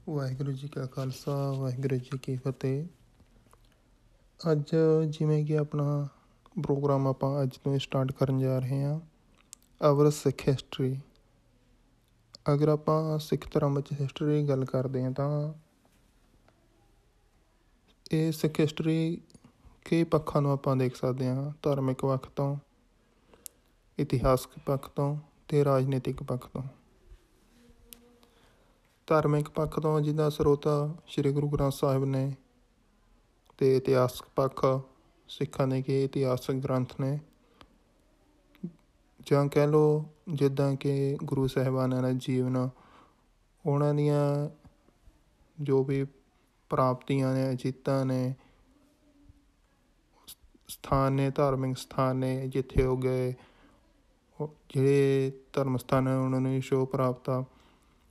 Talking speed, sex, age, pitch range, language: 95 wpm, male, 20-39, 130-145 Hz, Punjabi